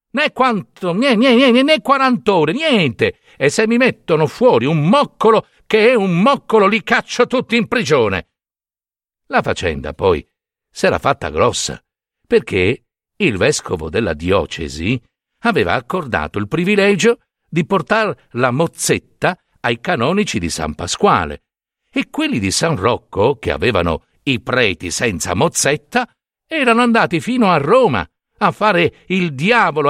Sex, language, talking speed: male, Italian, 140 wpm